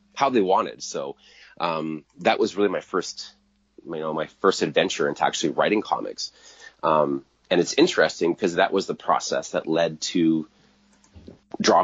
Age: 30-49